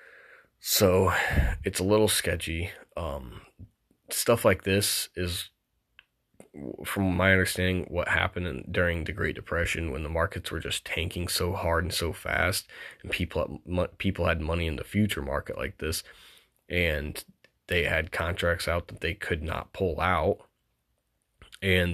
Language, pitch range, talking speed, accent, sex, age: English, 85-100 Hz, 150 wpm, American, male, 20-39